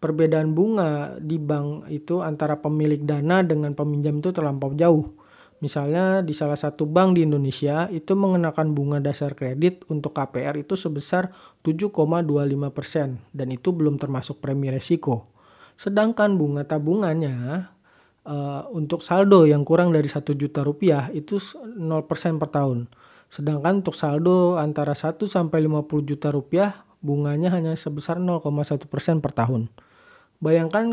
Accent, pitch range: native, 145-170 Hz